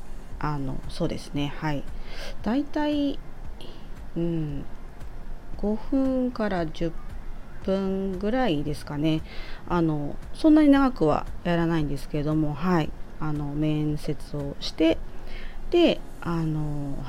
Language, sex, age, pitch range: Japanese, female, 30-49, 150-215 Hz